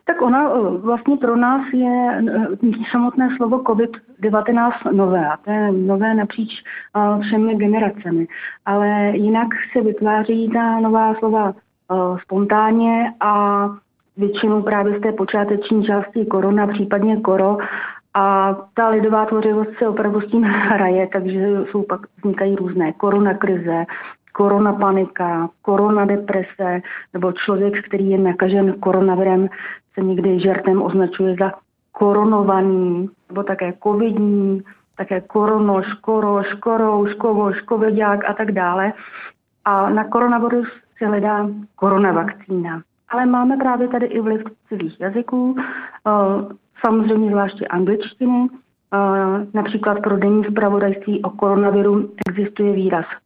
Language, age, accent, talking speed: Czech, 30-49, native, 115 wpm